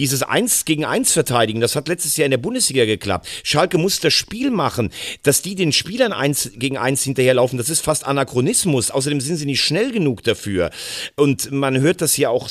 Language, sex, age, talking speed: German, male, 40-59, 205 wpm